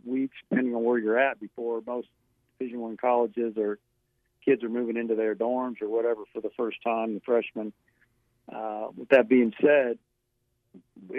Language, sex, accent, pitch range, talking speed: English, male, American, 120-130 Hz, 170 wpm